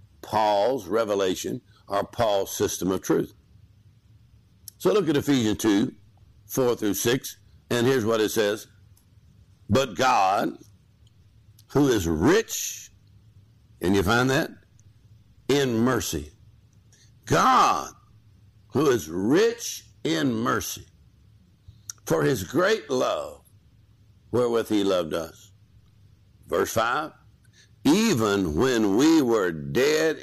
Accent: American